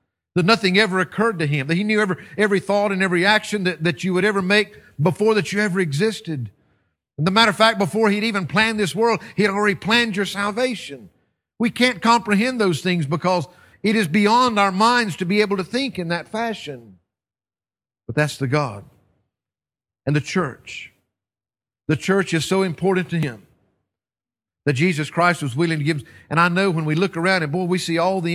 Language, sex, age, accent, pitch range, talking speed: English, male, 50-69, American, 125-190 Hz, 205 wpm